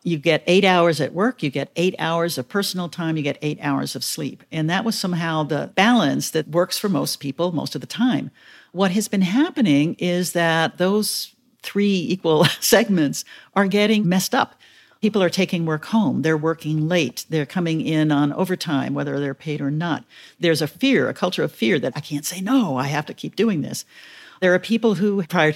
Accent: American